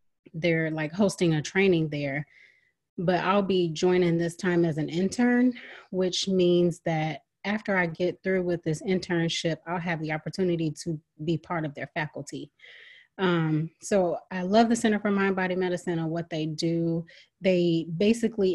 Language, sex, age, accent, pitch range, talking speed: English, female, 30-49, American, 160-195 Hz, 165 wpm